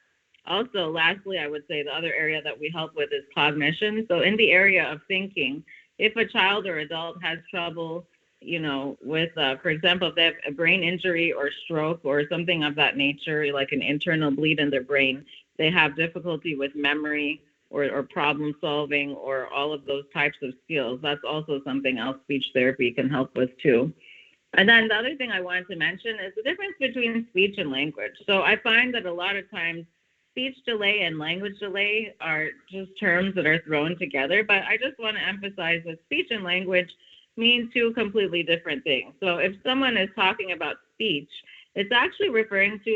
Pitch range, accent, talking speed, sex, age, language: 150-210 Hz, American, 195 wpm, female, 30-49, English